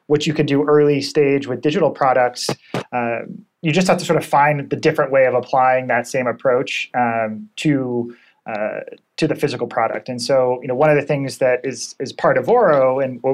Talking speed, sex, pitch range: 215 wpm, male, 125-150 Hz